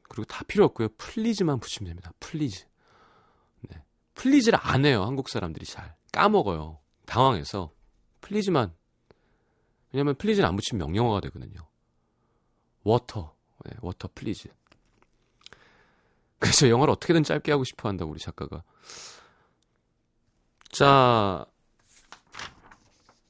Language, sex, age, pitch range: Korean, male, 40-59, 95-145 Hz